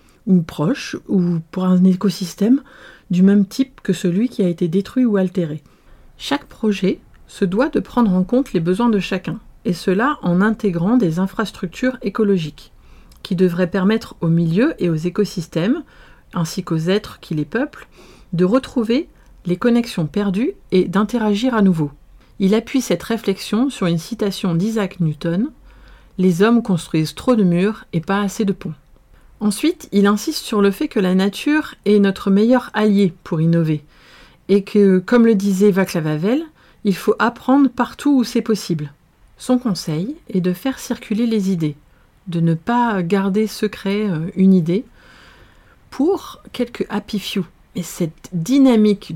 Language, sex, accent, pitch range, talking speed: French, female, French, 175-225 Hz, 160 wpm